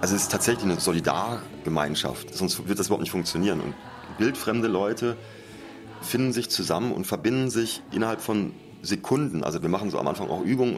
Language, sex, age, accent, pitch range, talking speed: German, male, 30-49, German, 95-120 Hz, 185 wpm